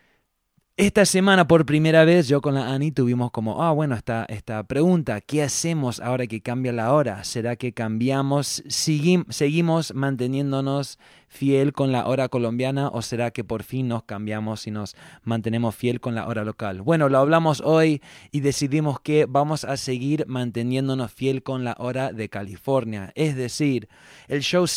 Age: 20-39